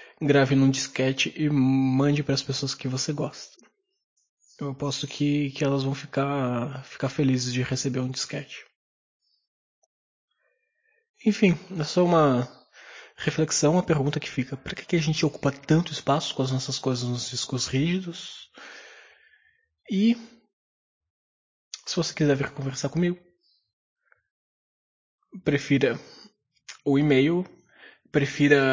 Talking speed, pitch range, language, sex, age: 120 wpm, 130-170 Hz, Portuguese, male, 20-39